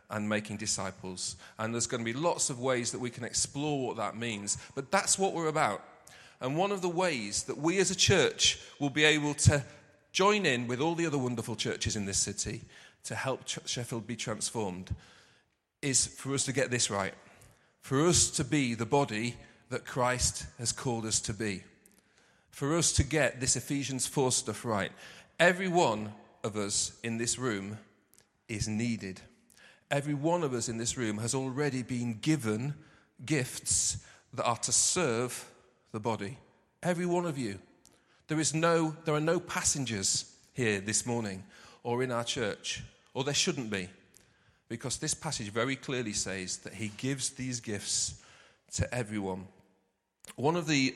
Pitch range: 110-140 Hz